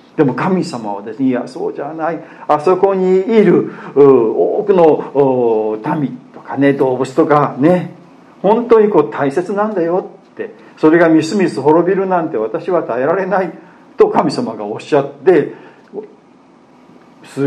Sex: male